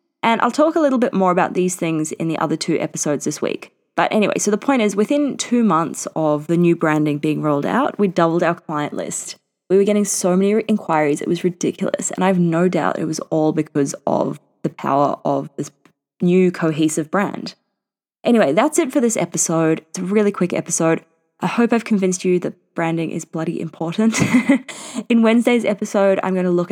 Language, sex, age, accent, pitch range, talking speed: English, female, 20-39, Australian, 170-220 Hz, 205 wpm